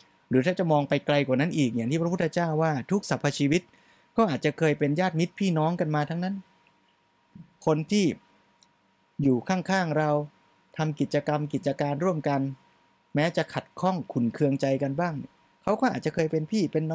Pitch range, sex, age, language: 130-165 Hz, male, 20-39, Thai